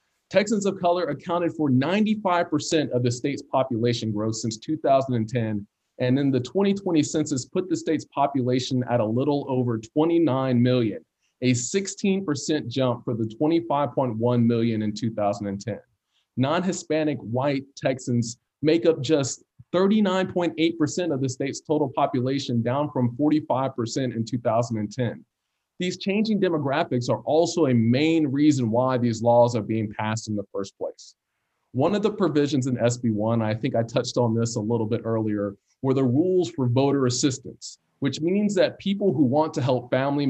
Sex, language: male, English